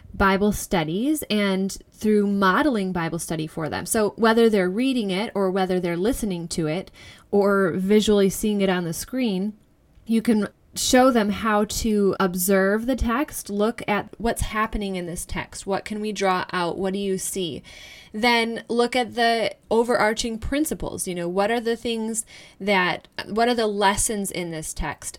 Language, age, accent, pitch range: English, 10-29, American, 185-225 Hz